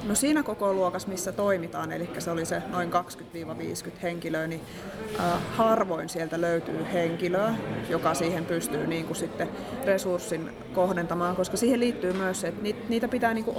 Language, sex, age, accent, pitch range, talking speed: Finnish, female, 20-39, native, 175-215 Hz, 160 wpm